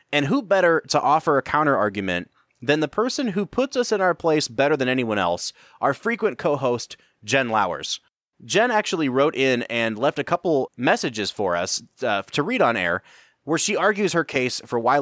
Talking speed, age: 190 wpm, 30-49